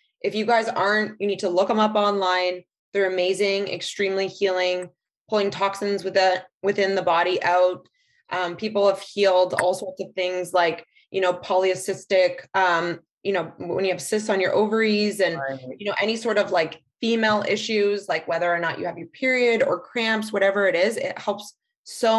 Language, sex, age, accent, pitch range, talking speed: English, female, 20-39, American, 180-210 Hz, 185 wpm